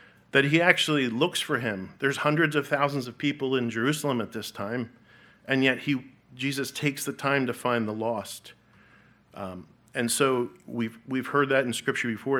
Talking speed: 185 wpm